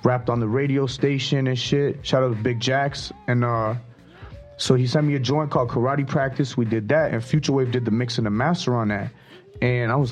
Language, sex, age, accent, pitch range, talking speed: Danish, male, 30-49, American, 115-140 Hz, 235 wpm